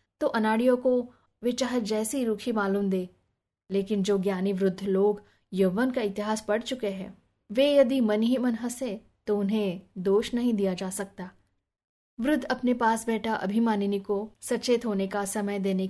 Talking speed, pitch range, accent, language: 85 wpm, 195-230 Hz, native, Hindi